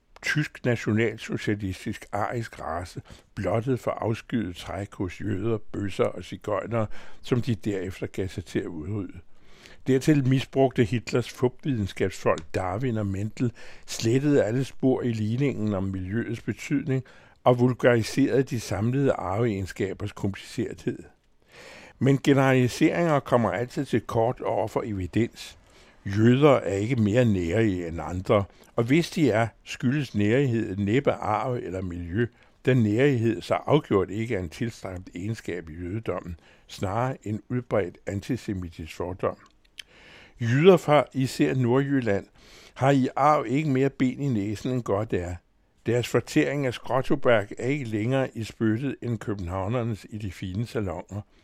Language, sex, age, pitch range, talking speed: Danish, male, 60-79, 100-130 Hz, 130 wpm